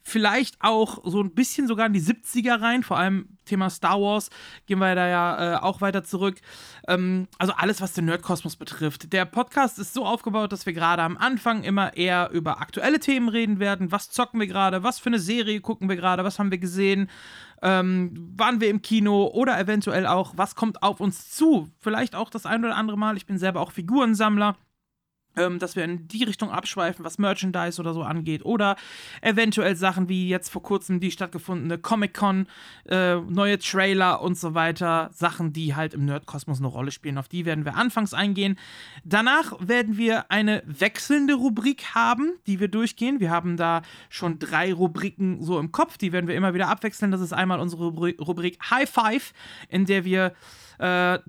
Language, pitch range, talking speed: German, 175-215 Hz, 190 wpm